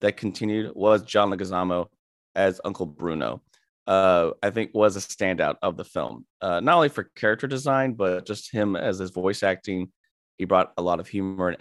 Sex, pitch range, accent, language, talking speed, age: male, 90-115 Hz, American, English, 190 wpm, 20-39